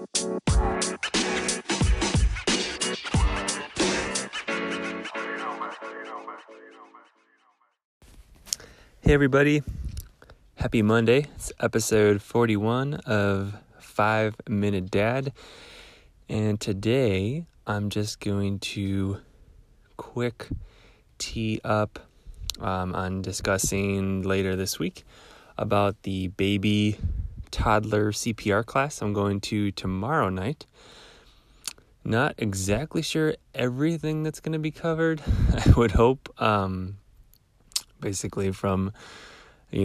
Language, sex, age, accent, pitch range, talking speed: English, male, 30-49, American, 95-115 Hz, 80 wpm